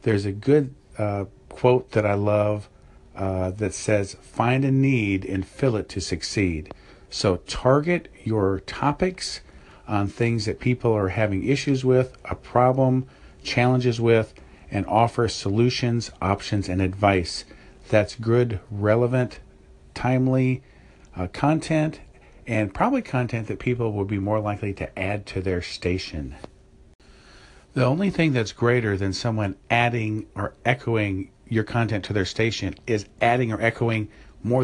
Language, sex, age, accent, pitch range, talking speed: English, male, 50-69, American, 95-125 Hz, 140 wpm